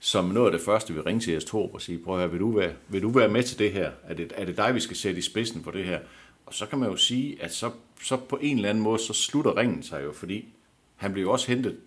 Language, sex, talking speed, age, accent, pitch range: Danish, male, 300 wpm, 60-79, native, 85-115 Hz